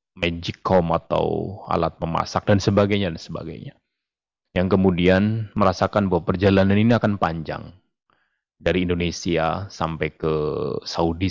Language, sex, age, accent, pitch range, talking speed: Indonesian, male, 30-49, native, 85-100 Hz, 110 wpm